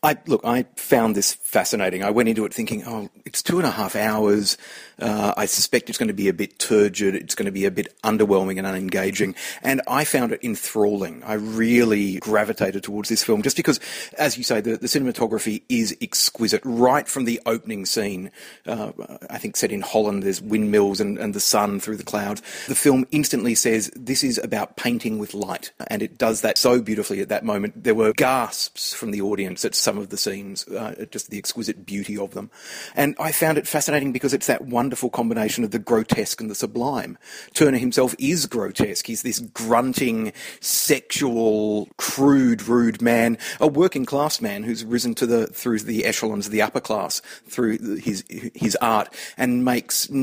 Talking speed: 195 wpm